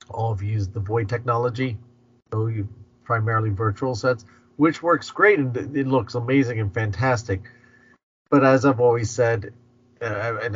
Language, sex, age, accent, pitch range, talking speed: English, male, 40-59, American, 100-120 Hz, 155 wpm